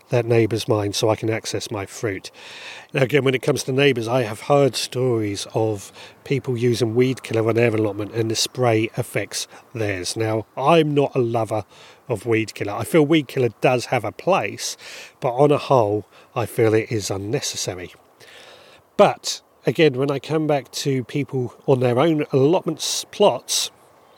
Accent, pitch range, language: British, 110-145 Hz, English